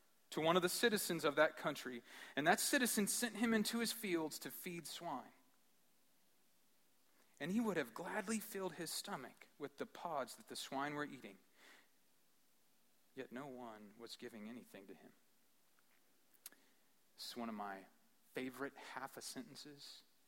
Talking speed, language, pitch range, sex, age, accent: 155 wpm, English, 105-155 Hz, male, 40-59, American